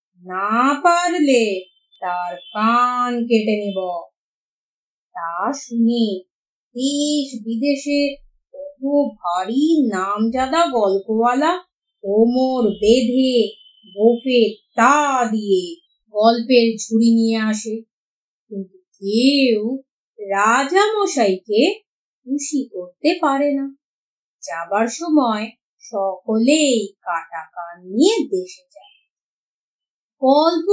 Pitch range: 215-330 Hz